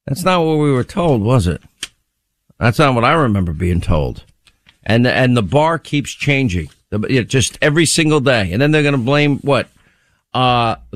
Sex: male